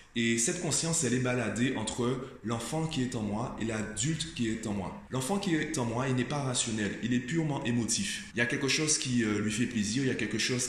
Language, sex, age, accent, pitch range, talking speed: French, male, 20-39, French, 115-150 Hz, 255 wpm